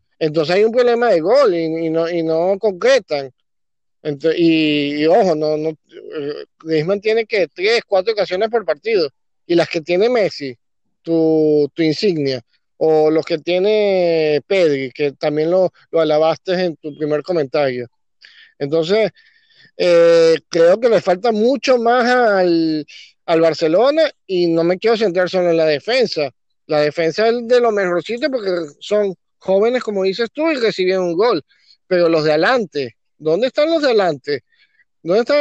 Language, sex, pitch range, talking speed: Spanish, male, 155-220 Hz, 160 wpm